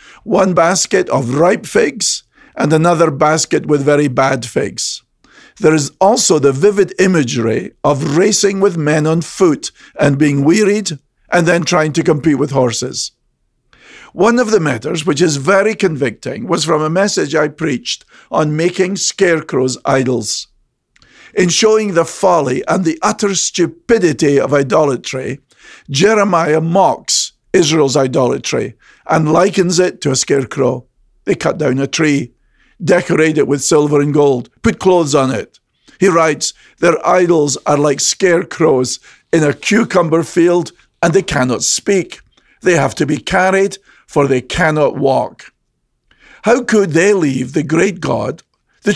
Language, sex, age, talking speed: English, male, 50-69, 145 wpm